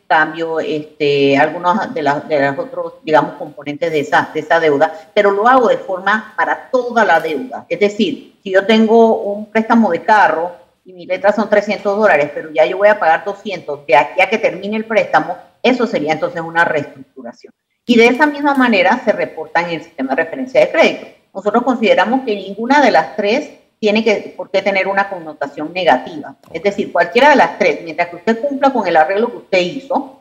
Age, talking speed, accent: 40-59, 205 wpm, American